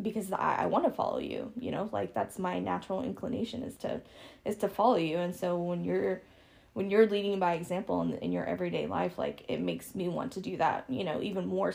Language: English